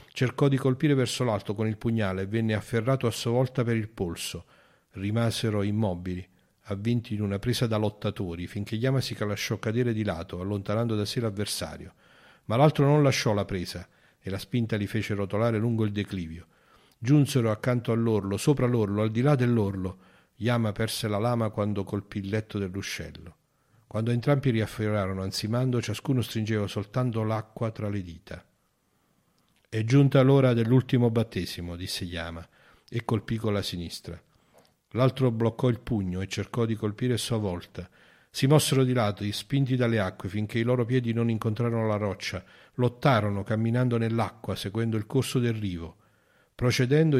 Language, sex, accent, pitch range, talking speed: Italian, male, native, 100-125 Hz, 160 wpm